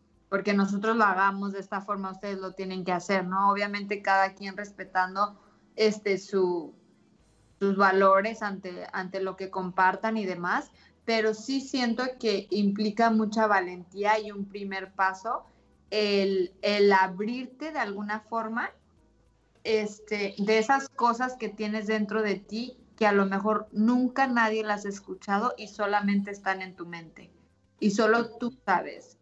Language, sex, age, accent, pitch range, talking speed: English, female, 20-39, Mexican, 195-220 Hz, 150 wpm